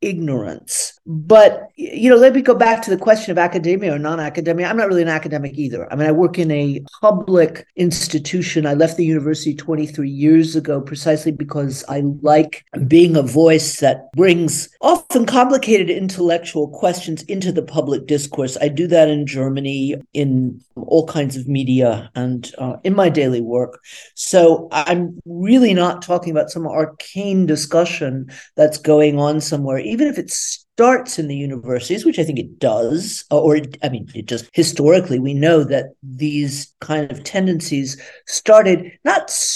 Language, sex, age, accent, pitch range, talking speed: English, male, 40-59, American, 145-180 Hz, 165 wpm